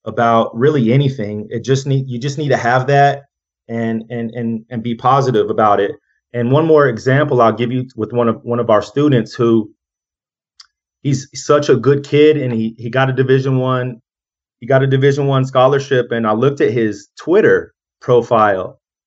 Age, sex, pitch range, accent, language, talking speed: 30-49, male, 115-135 Hz, American, English, 190 wpm